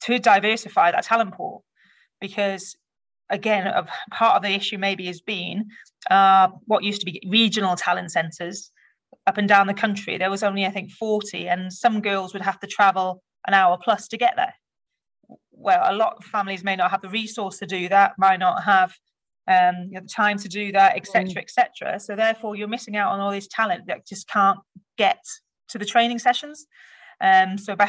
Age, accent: 30-49, British